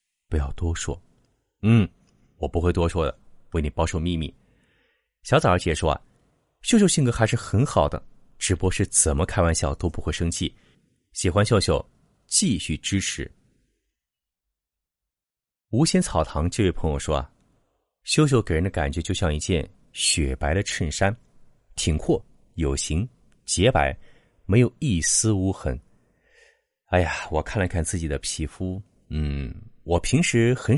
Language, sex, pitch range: Chinese, male, 80-120 Hz